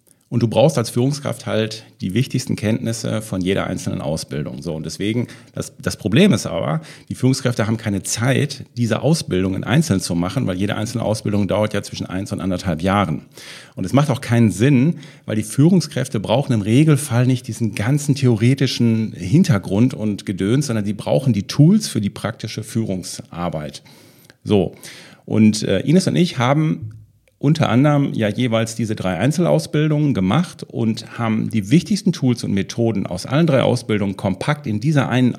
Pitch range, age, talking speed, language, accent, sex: 105-135 Hz, 40-59, 170 wpm, German, German, male